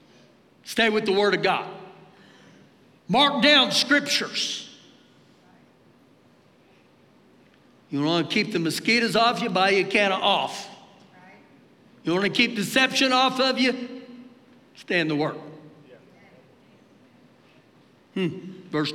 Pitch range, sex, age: 230-290 Hz, male, 60-79